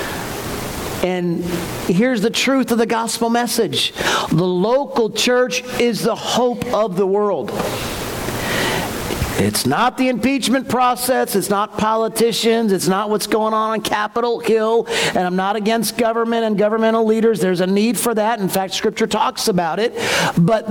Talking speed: 155 wpm